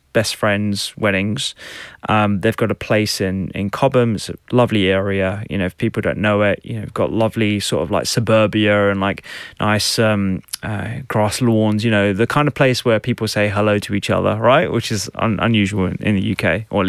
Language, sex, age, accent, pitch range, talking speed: English, male, 20-39, British, 105-130 Hz, 210 wpm